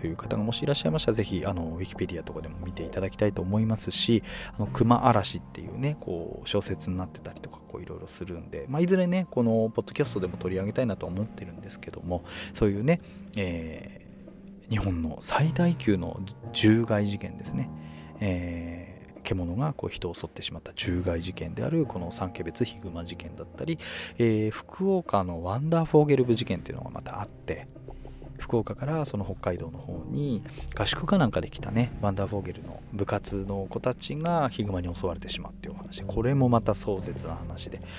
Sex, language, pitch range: male, Japanese, 90-140 Hz